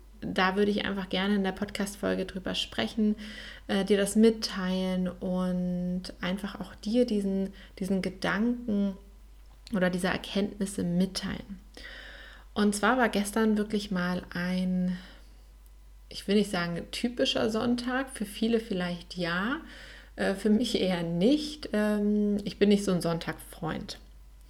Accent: German